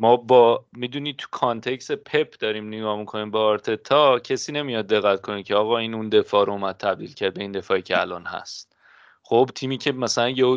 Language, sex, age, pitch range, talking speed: Persian, male, 30-49, 110-145 Hz, 210 wpm